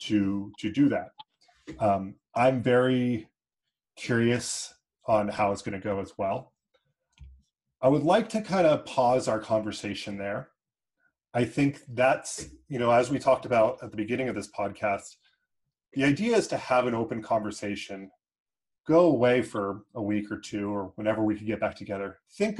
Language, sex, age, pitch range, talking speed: English, male, 30-49, 105-130 Hz, 165 wpm